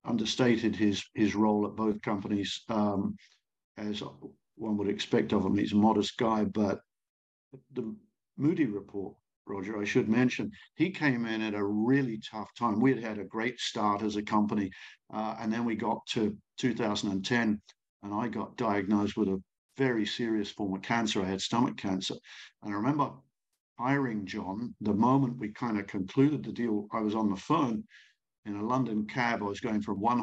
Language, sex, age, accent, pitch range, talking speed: English, male, 50-69, British, 100-115 Hz, 185 wpm